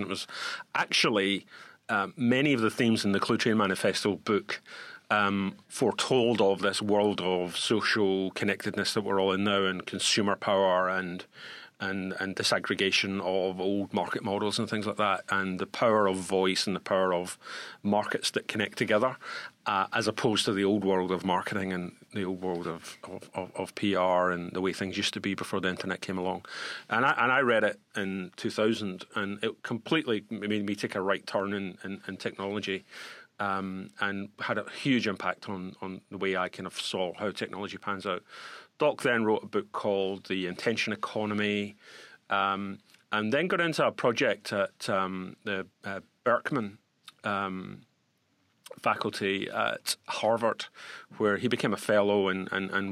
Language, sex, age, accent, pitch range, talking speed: English, male, 40-59, British, 95-105 Hz, 175 wpm